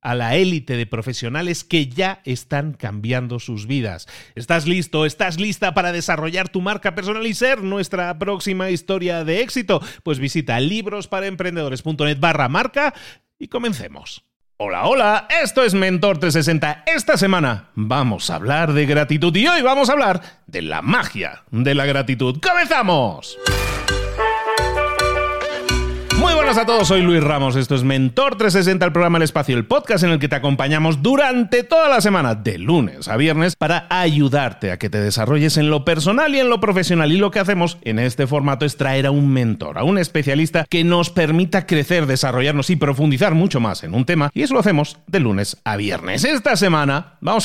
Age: 40-59